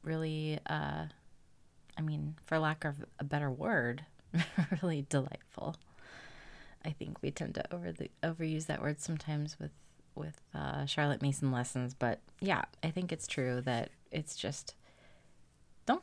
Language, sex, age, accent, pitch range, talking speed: English, female, 30-49, American, 145-185 Hz, 145 wpm